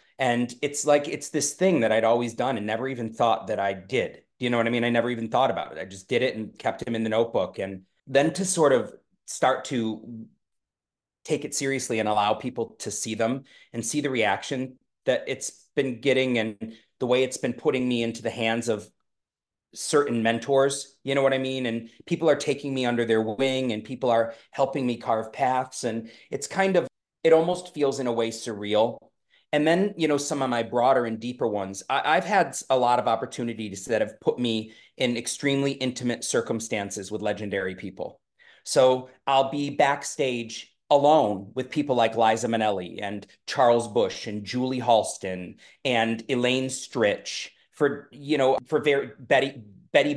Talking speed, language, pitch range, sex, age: 195 wpm, English, 115-135 Hz, male, 30-49